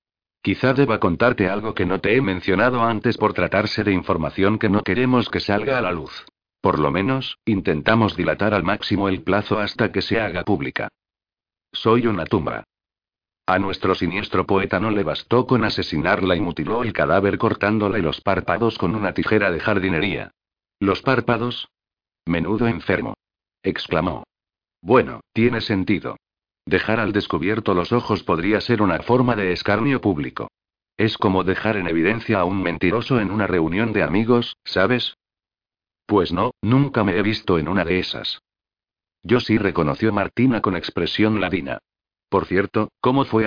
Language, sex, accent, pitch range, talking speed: Spanish, male, Spanish, 95-110 Hz, 160 wpm